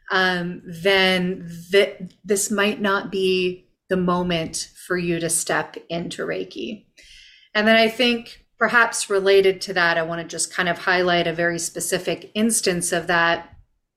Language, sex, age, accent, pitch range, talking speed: English, female, 30-49, American, 170-195 Hz, 150 wpm